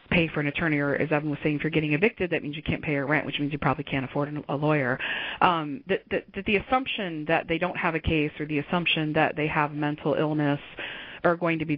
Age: 30-49